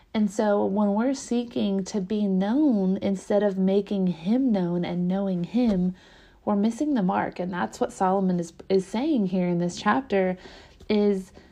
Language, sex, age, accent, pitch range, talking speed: English, female, 30-49, American, 185-215 Hz, 165 wpm